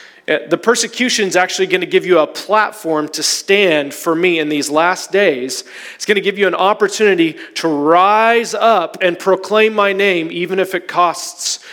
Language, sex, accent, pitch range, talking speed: English, male, American, 155-190 Hz, 185 wpm